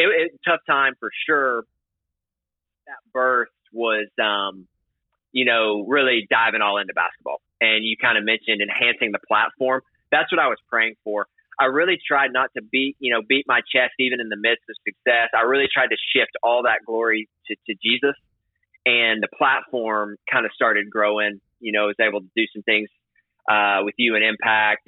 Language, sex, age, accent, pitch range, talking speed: English, male, 30-49, American, 105-125 Hz, 195 wpm